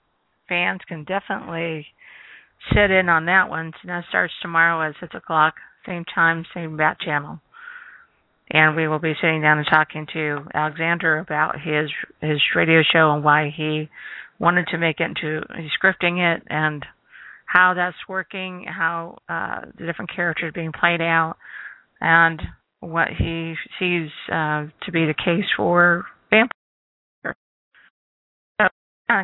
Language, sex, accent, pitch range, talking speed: English, female, American, 155-175 Hz, 145 wpm